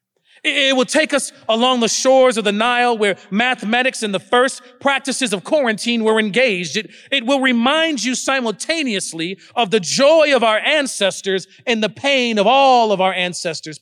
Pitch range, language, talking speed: 220-270 Hz, English, 175 wpm